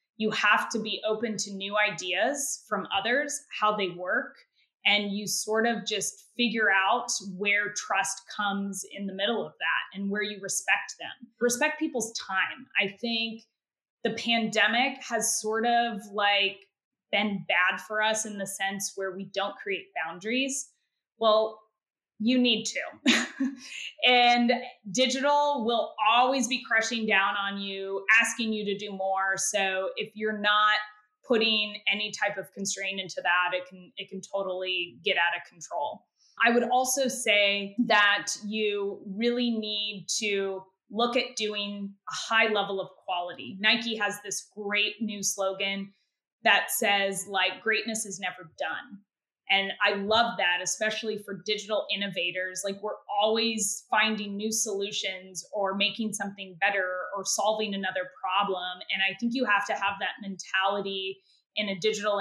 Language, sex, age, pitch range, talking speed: English, female, 20-39, 195-225 Hz, 150 wpm